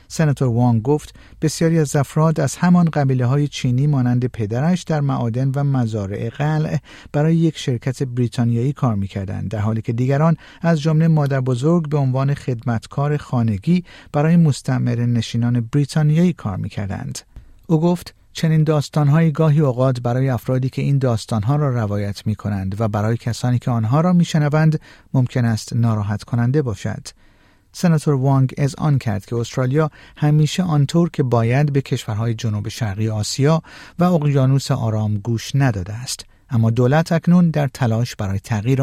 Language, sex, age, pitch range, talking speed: Persian, male, 50-69, 115-150 Hz, 150 wpm